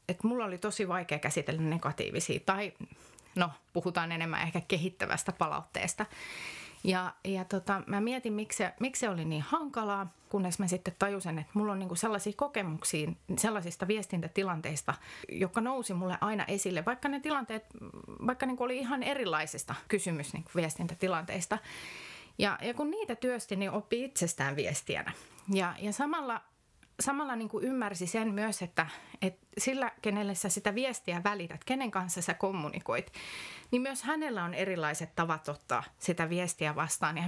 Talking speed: 145 wpm